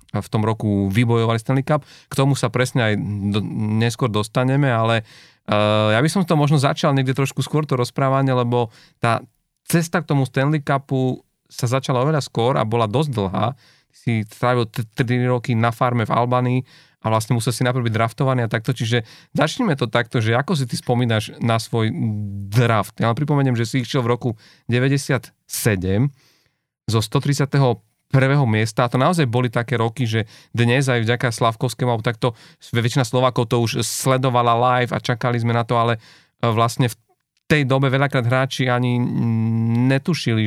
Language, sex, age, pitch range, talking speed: Slovak, male, 40-59, 115-135 Hz, 175 wpm